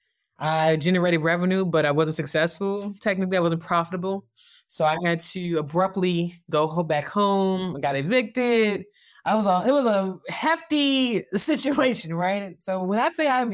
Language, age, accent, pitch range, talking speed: English, 20-39, American, 155-190 Hz, 160 wpm